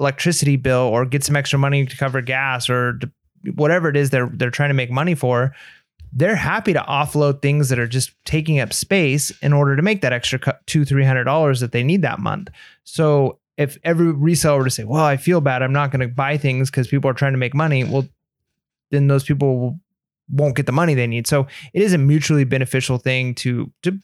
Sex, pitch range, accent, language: male, 130-150 Hz, American, English